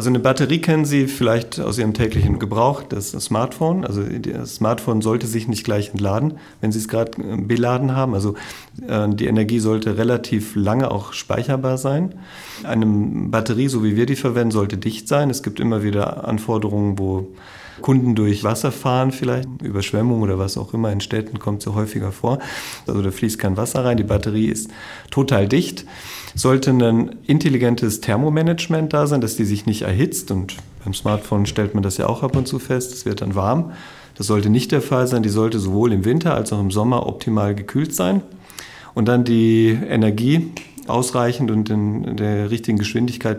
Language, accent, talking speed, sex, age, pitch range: German, German, 185 wpm, male, 40-59, 105-125 Hz